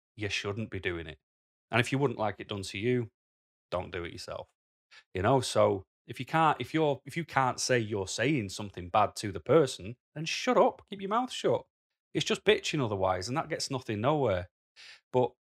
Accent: British